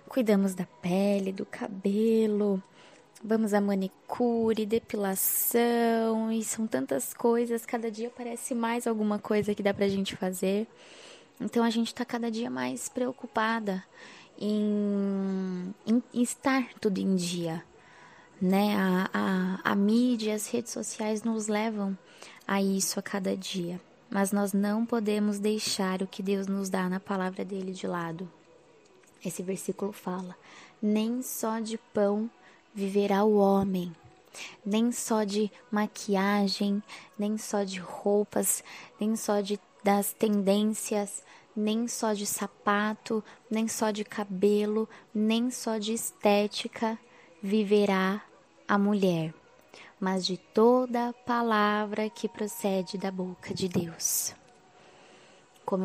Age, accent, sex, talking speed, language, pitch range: 20-39, Brazilian, female, 125 wpm, Portuguese, 195-225 Hz